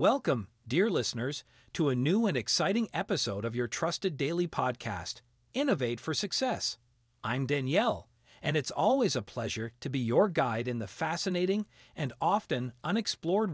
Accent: American